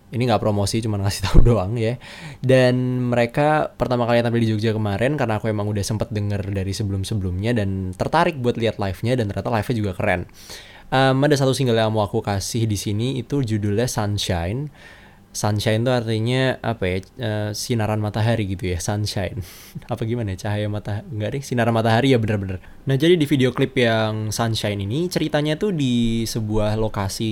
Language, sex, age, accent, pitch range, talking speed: Indonesian, male, 20-39, native, 105-125 Hz, 180 wpm